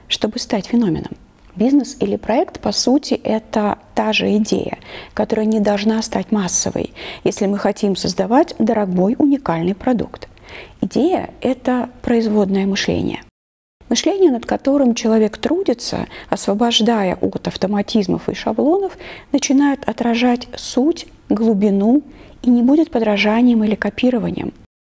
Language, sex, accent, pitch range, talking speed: Russian, female, native, 200-260 Hz, 115 wpm